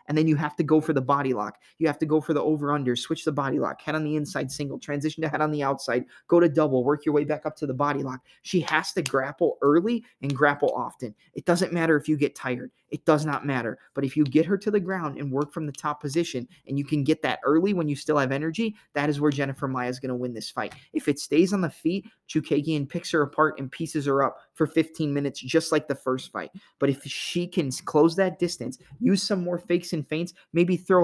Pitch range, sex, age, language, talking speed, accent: 140-165 Hz, male, 20-39, English, 260 wpm, American